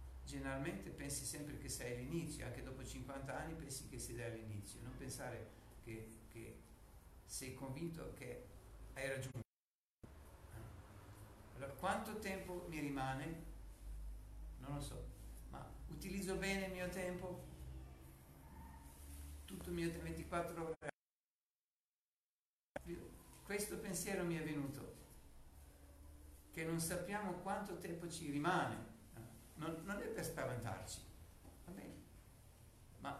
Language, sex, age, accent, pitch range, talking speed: Italian, male, 50-69, native, 100-160 Hz, 110 wpm